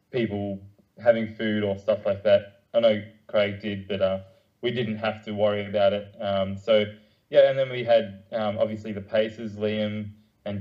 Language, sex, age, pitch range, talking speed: English, male, 20-39, 100-115 Hz, 185 wpm